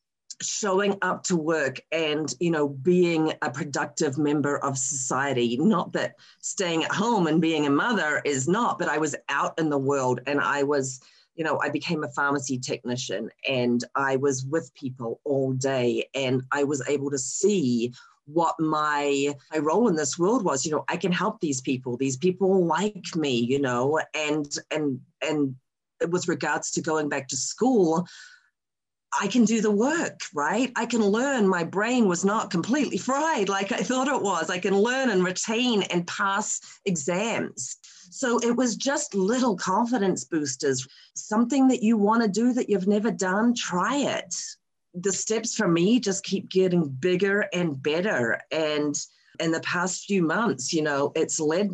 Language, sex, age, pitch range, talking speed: English, female, 40-59, 145-200 Hz, 175 wpm